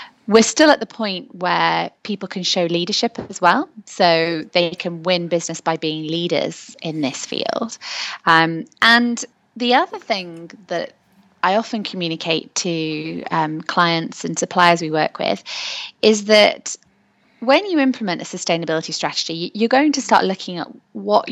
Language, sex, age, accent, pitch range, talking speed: English, female, 20-39, British, 165-220 Hz, 155 wpm